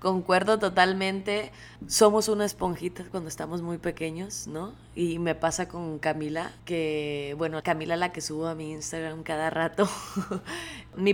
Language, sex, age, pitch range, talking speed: Spanish, female, 20-39, 180-220 Hz, 145 wpm